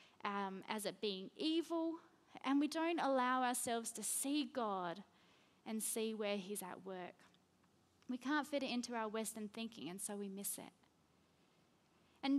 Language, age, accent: English, 20-39, Australian